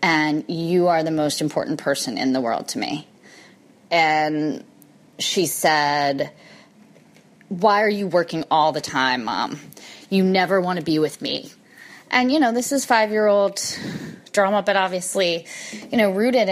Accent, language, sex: American, English, female